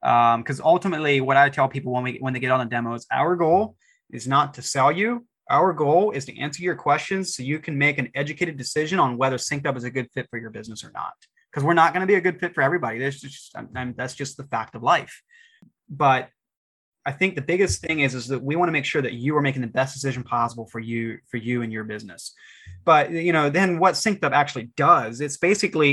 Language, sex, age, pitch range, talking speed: English, male, 20-39, 125-145 Hz, 250 wpm